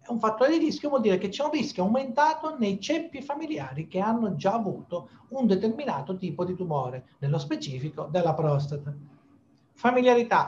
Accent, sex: native, male